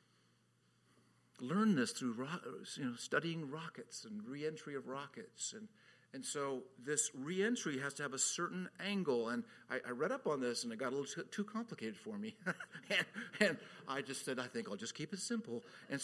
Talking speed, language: 200 wpm, English